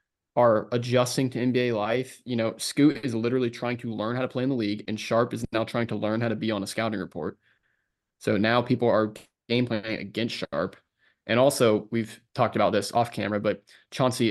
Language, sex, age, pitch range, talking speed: English, male, 20-39, 110-125 Hz, 215 wpm